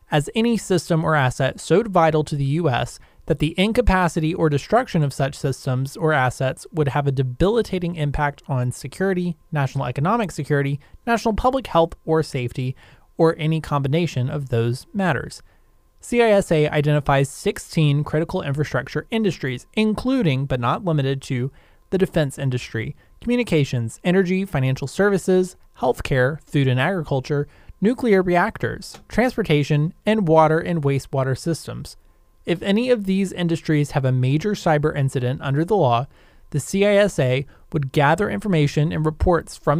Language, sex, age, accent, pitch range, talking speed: English, male, 20-39, American, 140-180 Hz, 140 wpm